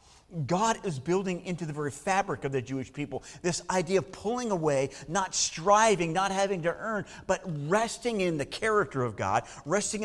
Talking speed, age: 180 wpm, 50-69